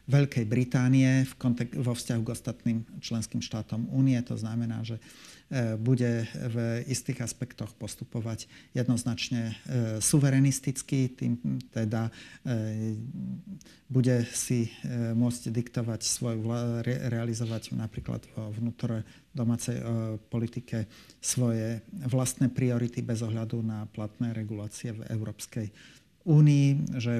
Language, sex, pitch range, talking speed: Slovak, male, 110-125 Hz, 115 wpm